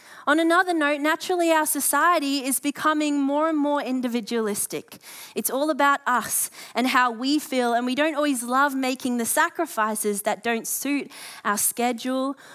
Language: English